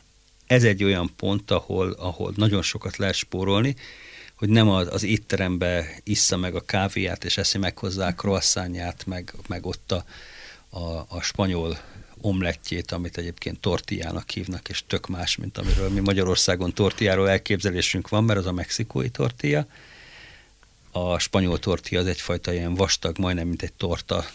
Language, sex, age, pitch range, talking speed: Hungarian, male, 50-69, 90-105 Hz, 155 wpm